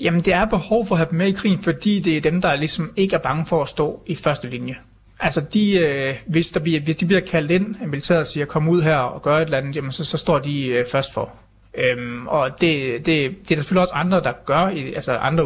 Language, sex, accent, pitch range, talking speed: Danish, male, native, 135-175 Hz, 265 wpm